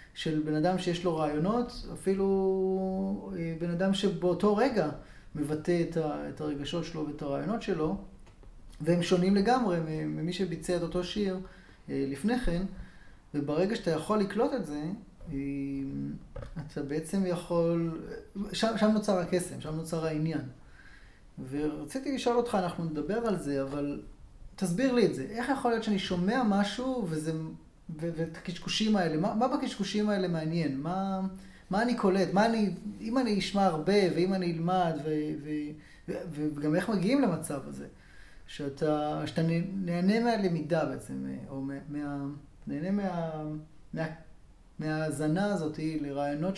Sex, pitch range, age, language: male, 150-195 Hz, 20-39, Hebrew